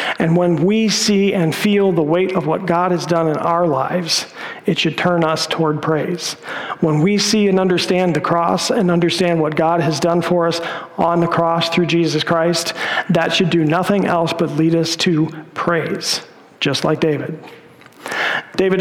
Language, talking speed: English, 180 wpm